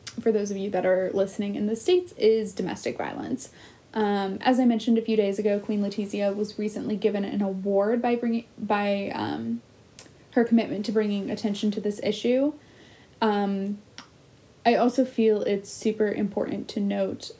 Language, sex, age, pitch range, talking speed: English, female, 10-29, 195-230 Hz, 170 wpm